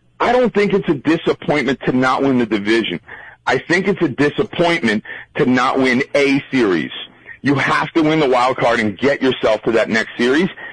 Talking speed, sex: 195 wpm, male